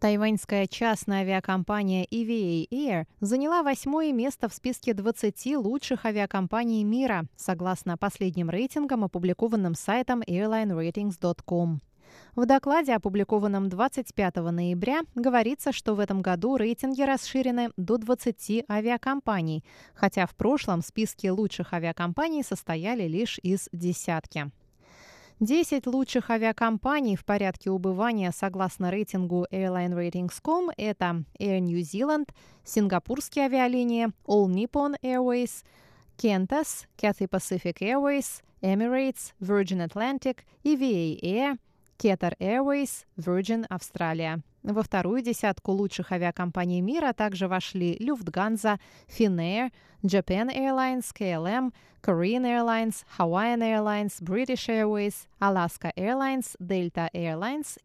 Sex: female